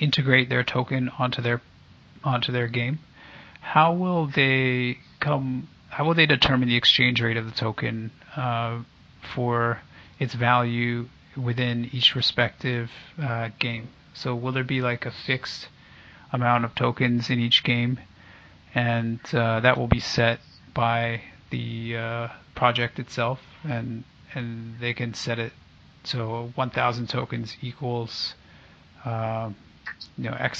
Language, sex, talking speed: English, male, 135 wpm